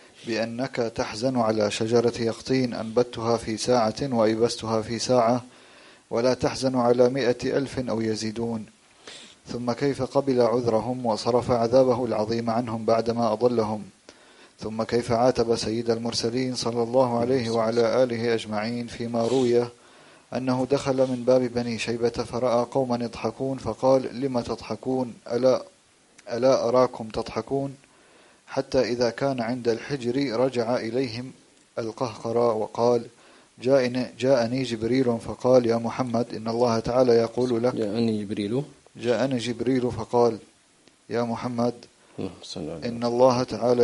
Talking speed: 115 wpm